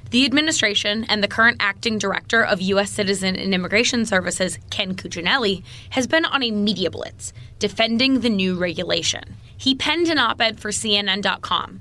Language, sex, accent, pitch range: English, female, American, 190-230 Hz